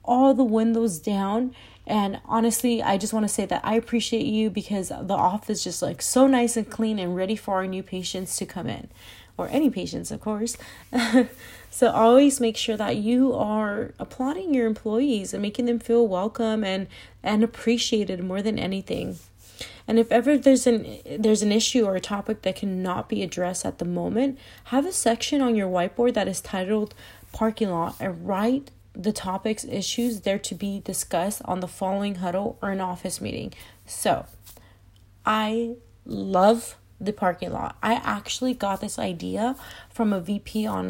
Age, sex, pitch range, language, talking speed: 30-49, female, 195-235 Hz, English, 180 wpm